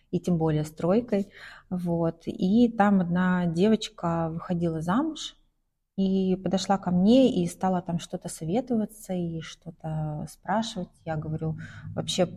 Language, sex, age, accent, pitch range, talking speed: Russian, female, 30-49, native, 170-205 Hz, 125 wpm